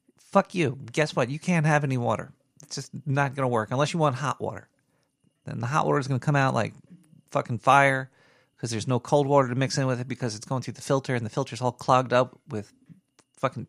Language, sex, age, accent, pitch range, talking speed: English, male, 40-59, American, 125-165 Hz, 245 wpm